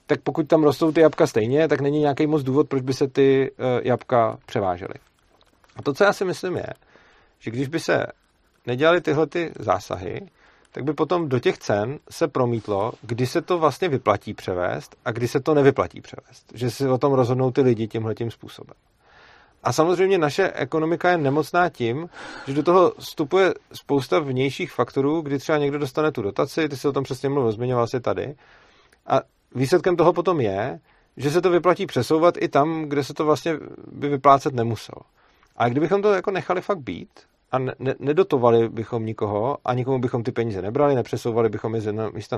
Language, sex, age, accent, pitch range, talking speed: Czech, male, 40-59, native, 120-165 Hz, 185 wpm